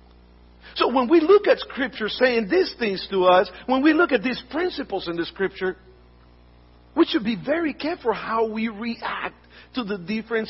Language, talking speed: English, 175 wpm